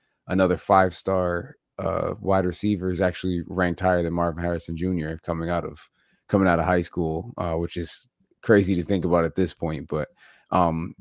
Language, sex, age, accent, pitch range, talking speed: English, male, 30-49, American, 85-95 Hz, 180 wpm